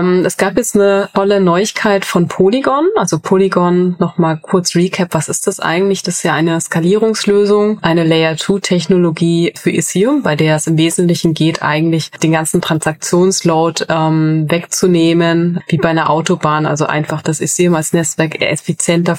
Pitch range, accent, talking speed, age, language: 155-180 Hz, German, 155 wpm, 20-39, German